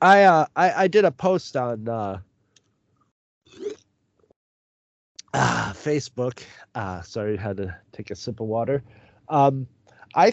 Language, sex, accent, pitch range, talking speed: English, male, American, 115-150 Hz, 130 wpm